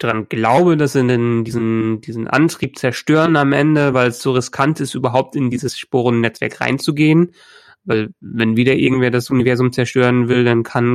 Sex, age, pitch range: male, 30-49, 120-140 Hz